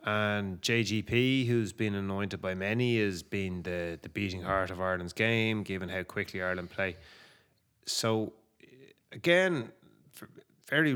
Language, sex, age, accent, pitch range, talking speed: English, male, 20-39, Irish, 95-115 Hz, 130 wpm